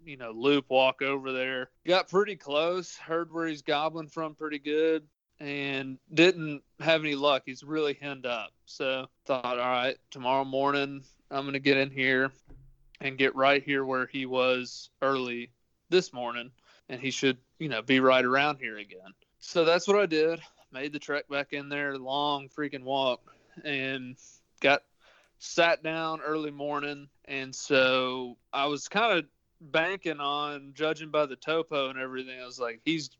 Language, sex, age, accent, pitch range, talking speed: English, male, 30-49, American, 130-160 Hz, 170 wpm